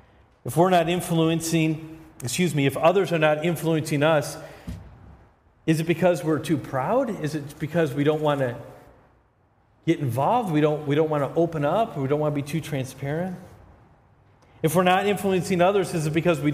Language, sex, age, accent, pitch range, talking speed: English, male, 40-59, American, 125-175 Hz, 190 wpm